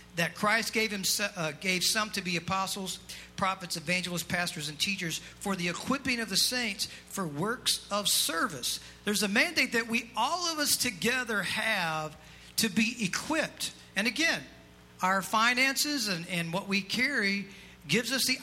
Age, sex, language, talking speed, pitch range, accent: 50-69, male, English, 165 wpm, 165-220 Hz, American